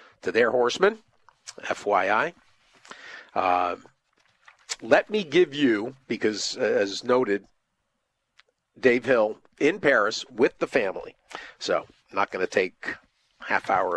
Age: 50-69